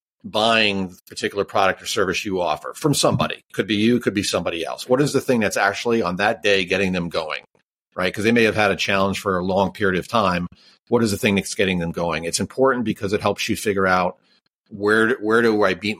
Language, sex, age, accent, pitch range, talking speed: English, male, 50-69, American, 95-115 Hz, 240 wpm